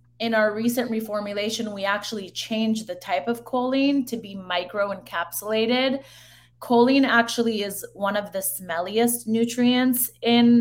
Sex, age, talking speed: female, 20-39, 130 wpm